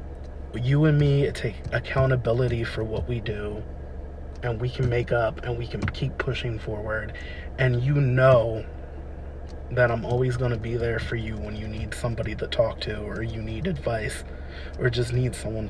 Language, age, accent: English, 30-49, American